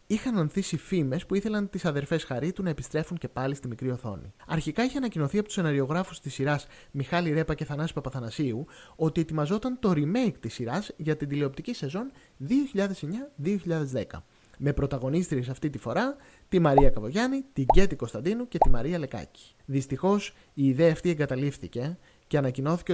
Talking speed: 160 wpm